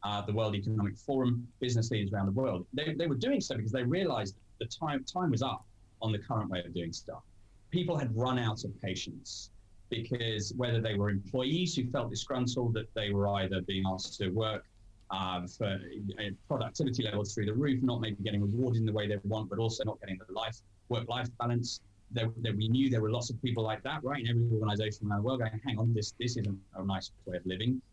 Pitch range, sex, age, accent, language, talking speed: 100-130 Hz, male, 30-49, British, English, 225 wpm